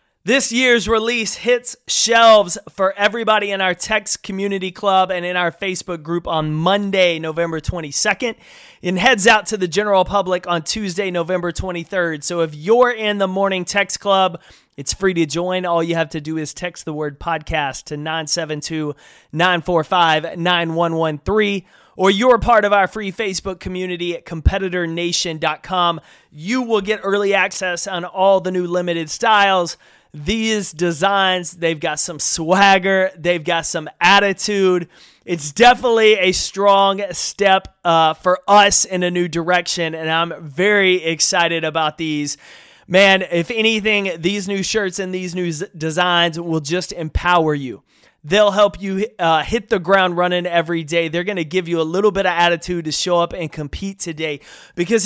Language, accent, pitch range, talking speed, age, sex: English, American, 170-200 Hz, 160 wpm, 30-49, male